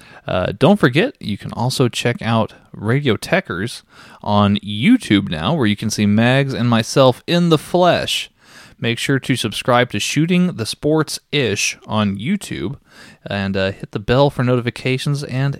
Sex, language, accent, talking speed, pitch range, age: male, English, American, 160 wpm, 100-125 Hz, 20-39